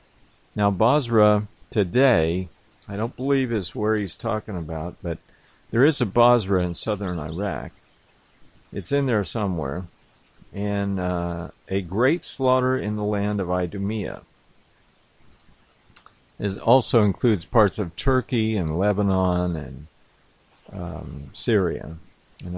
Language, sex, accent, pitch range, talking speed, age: English, male, American, 95-130 Hz, 120 wpm, 50-69